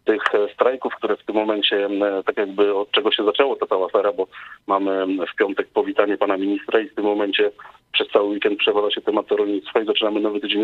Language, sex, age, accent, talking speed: Polish, male, 30-49, native, 205 wpm